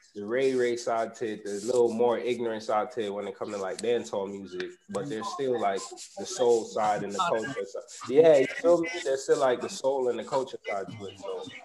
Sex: male